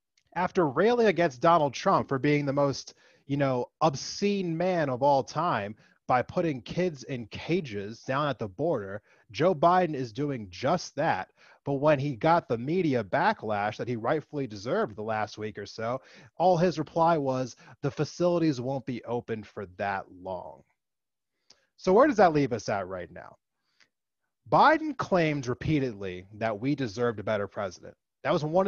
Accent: American